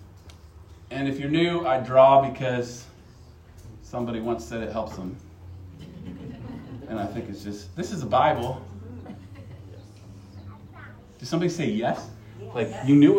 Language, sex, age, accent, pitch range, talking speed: English, male, 40-59, American, 130-215 Hz, 135 wpm